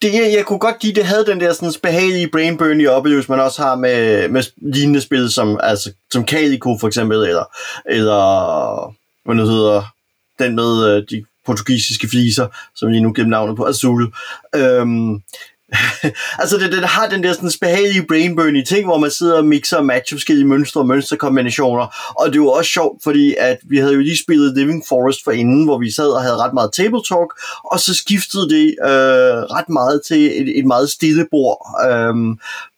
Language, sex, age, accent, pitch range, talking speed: Danish, male, 30-49, native, 125-165 Hz, 185 wpm